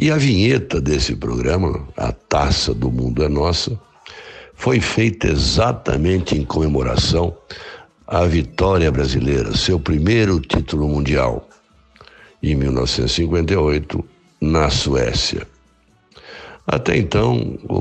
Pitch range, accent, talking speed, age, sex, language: 70-95 Hz, Brazilian, 100 wpm, 60-79, male, Portuguese